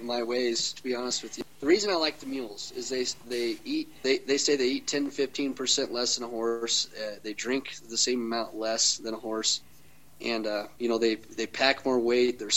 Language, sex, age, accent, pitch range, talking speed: English, male, 30-49, American, 115-130 Hz, 230 wpm